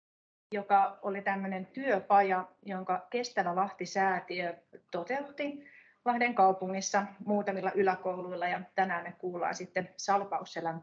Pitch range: 180-205 Hz